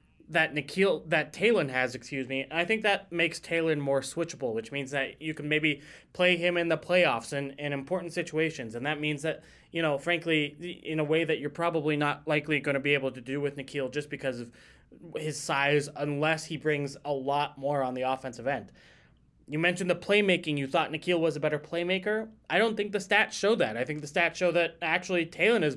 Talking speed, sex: 220 wpm, male